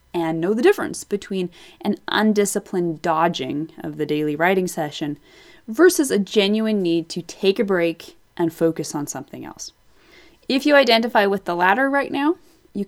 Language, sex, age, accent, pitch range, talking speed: English, female, 30-49, American, 170-235 Hz, 165 wpm